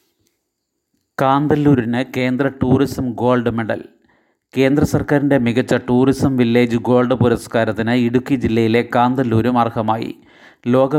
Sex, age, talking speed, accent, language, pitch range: male, 30-49, 95 wpm, native, Malayalam, 120-130 Hz